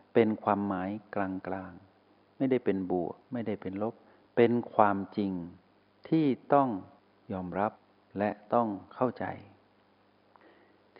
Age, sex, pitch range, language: 60-79, male, 95-115 Hz, Thai